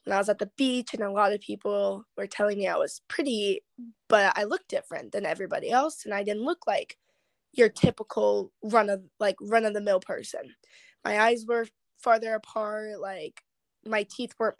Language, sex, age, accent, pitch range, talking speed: English, female, 10-29, American, 205-245 Hz, 185 wpm